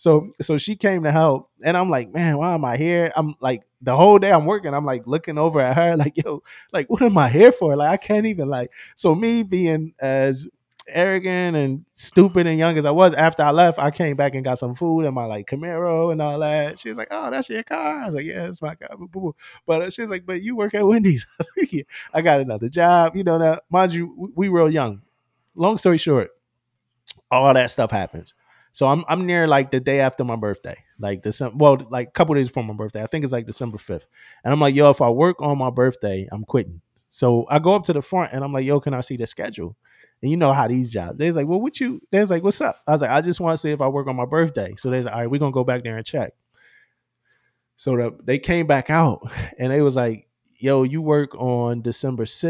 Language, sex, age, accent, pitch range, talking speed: English, male, 20-39, American, 125-170 Hz, 250 wpm